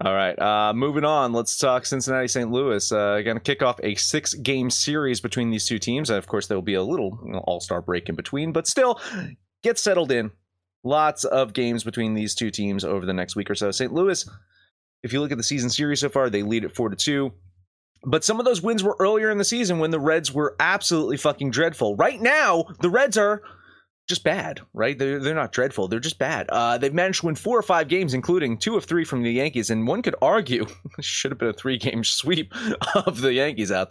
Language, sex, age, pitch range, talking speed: English, male, 30-49, 115-165 Hz, 230 wpm